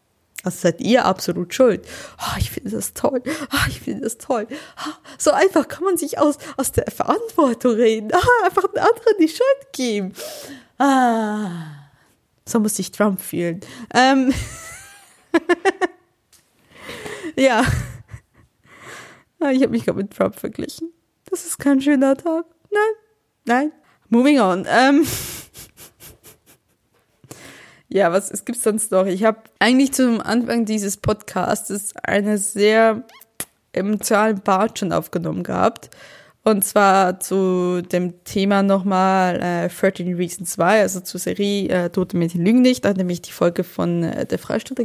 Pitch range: 190-255 Hz